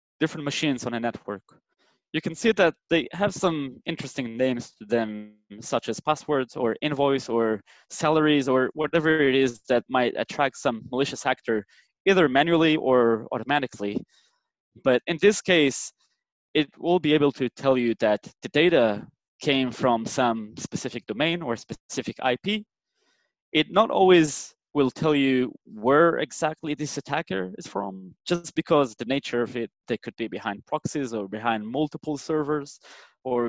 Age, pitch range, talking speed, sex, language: 20-39, 115-150 Hz, 155 wpm, male, English